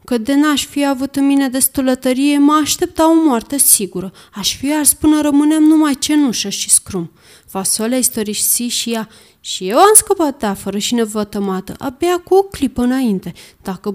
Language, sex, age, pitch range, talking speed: Romanian, female, 20-39, 210-295 Hz, 170 wpm